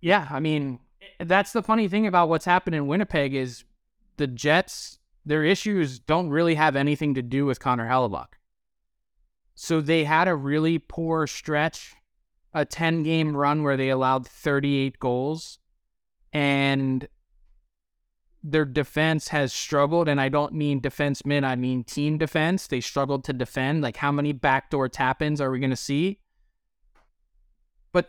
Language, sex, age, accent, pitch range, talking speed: English, male, 20-39, American, 130-160 Hz, 150 wpm